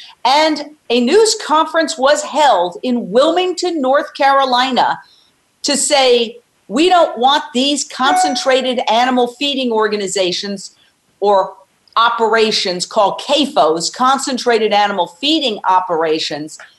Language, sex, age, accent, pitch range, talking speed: English, female, 50-69, American, 230-295 Hz, 100 wpm